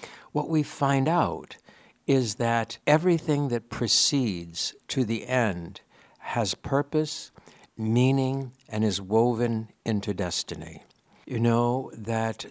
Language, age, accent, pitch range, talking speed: English, 60-79, American, 95-120 Hz, 110 wpm